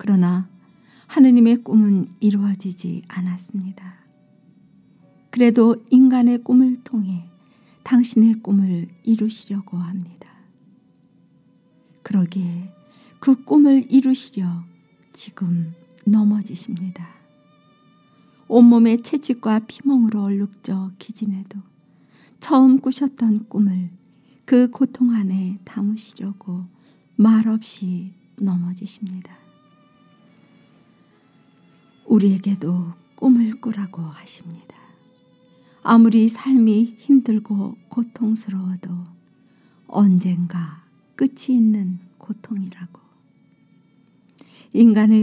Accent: native